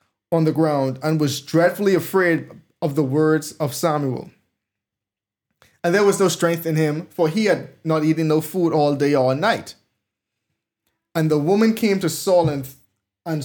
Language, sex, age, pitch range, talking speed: English, male, 20-39, 140-175 Hz, 165 wpm